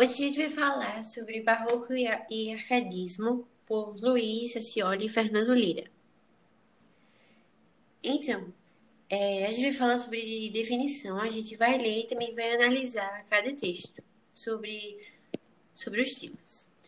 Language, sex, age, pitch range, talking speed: Portuguese, female, 20-39, 210-250 Hz, 130 wpm